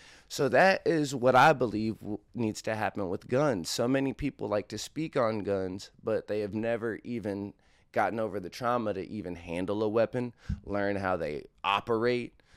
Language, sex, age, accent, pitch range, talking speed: English, male, 20-39, American, 100-125 Hz, 175 wpm